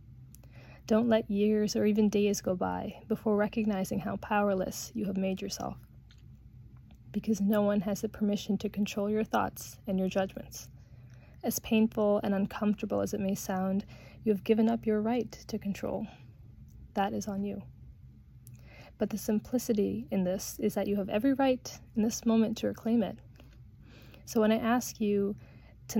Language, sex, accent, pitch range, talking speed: English, female, American, 195-220 Hz, 165 wpm